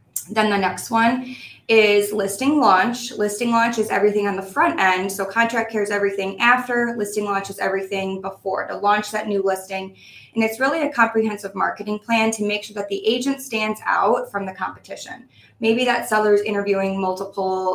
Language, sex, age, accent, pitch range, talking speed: English, female, 20-39, American, 195-220 Hz, 185 wpm